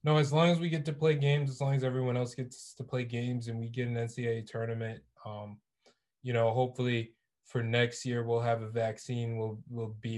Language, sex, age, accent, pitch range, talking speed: English, male, 20-39, American, 110-120 Hz, 225 wpm